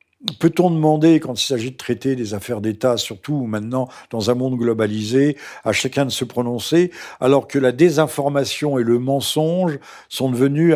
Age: 50-69